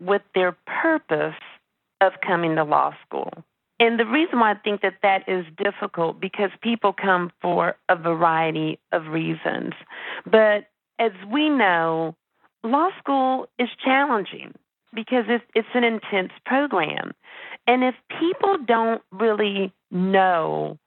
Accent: American